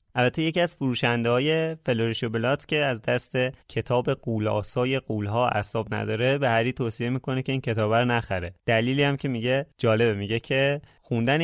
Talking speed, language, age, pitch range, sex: 165 wpm, Persian, 30-49, 115-145 Hz, male